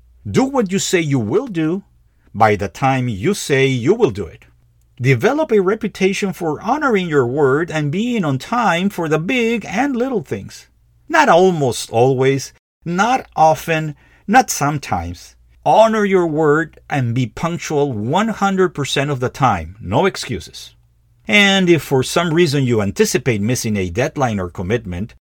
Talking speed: 150 wpm